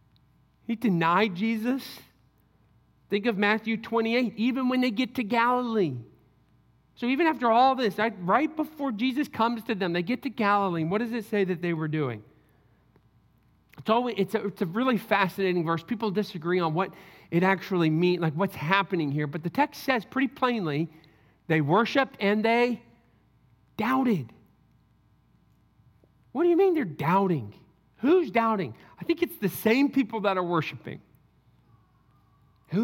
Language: English